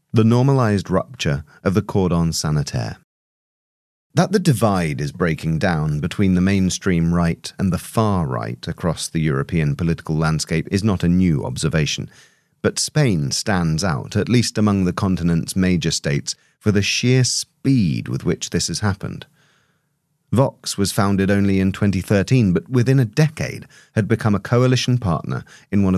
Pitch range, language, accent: 85-115 Hz, English, British